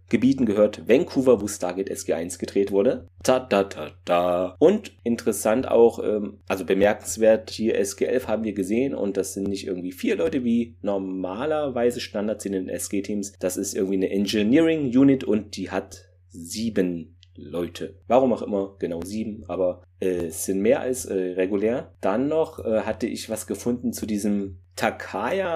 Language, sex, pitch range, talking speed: German, male, 95-115 Hz, 155 wpm